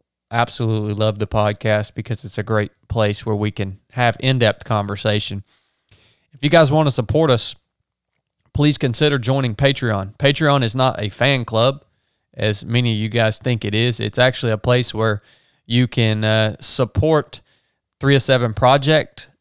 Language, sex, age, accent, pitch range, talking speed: English, male, 20-39, American, 105-125 Hz, 160 wpm